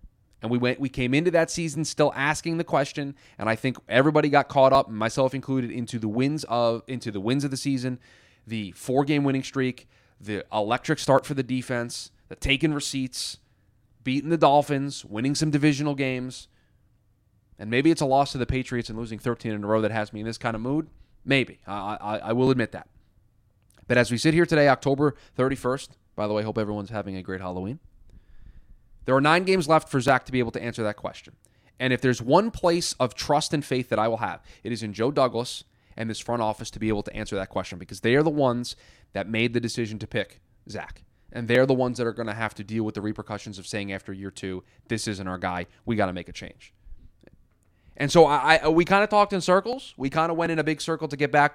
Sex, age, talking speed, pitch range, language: male, 20-39, 235 wpm, 110-140 Hz, English